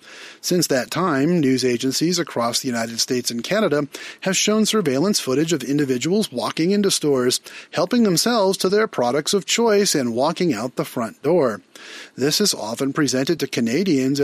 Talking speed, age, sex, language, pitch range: 165 wpm, 40-59, male, English, 130-185 Hz